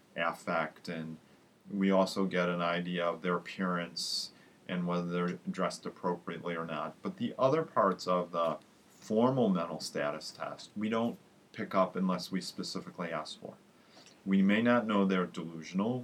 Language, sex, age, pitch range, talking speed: English, male, 40-59, 90-105 Hz, 155 wpm